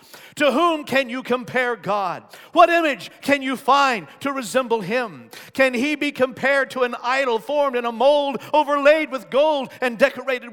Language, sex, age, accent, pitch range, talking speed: English, male, 50-69, American, 225-295 Hz, 170 wpm